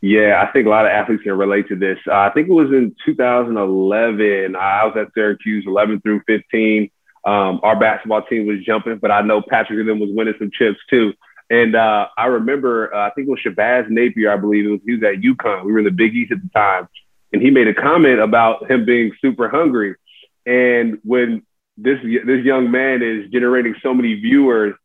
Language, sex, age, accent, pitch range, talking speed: English, male, 30-49, American, 105-120 Hz, 220 wpm